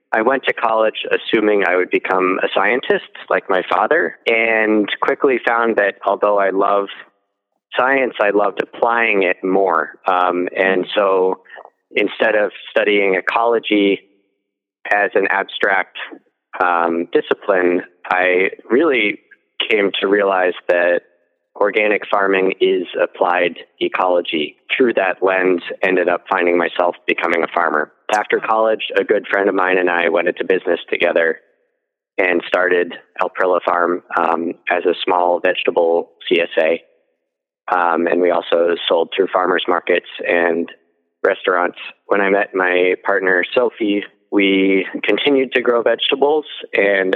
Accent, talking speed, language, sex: American, 130 wpm, English, male